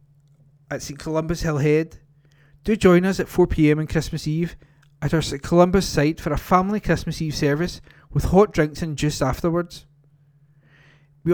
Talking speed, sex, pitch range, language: 160 wpm, male, 145-170 Hz, English